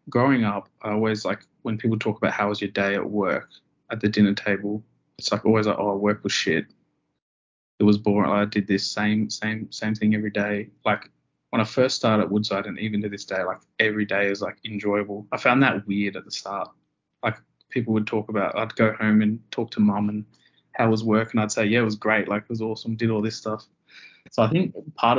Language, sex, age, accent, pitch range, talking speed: English, male, 20-39, Australian, 105-110 Hz, 240 wpm